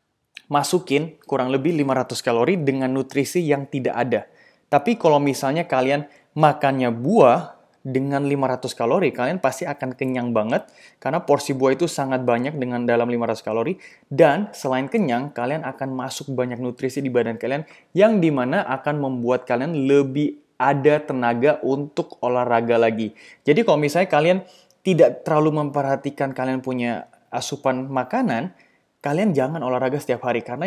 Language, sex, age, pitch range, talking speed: Indonesian, male, 20-39, 125-150 Hz, 145 wpm